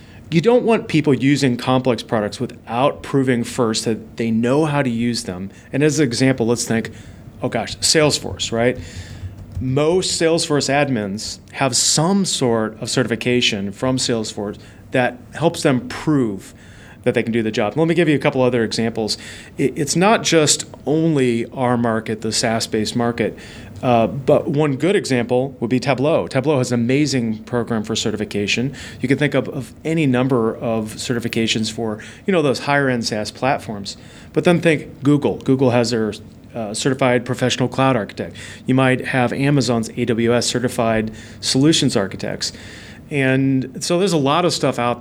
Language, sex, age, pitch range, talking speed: English, male, 30-49, 110-140 Hz, 165 wpm